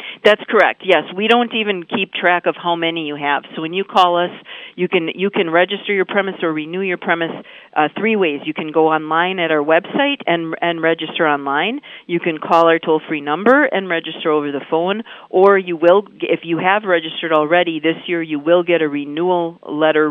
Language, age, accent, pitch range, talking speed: English, 50-69, American, 145-175 Hz, 210 wpm